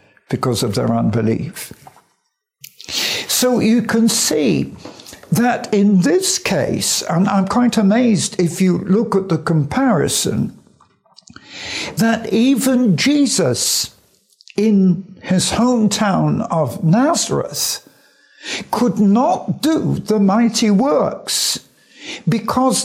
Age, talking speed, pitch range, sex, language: 60-79, 95 wpm, 185-255 Hz, male, English